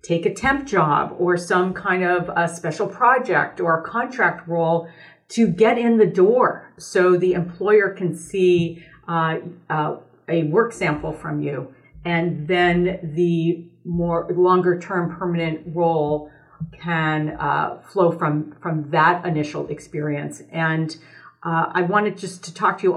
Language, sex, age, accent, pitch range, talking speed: English, female, 50-69, American, 165-185 Hz, 150 wpm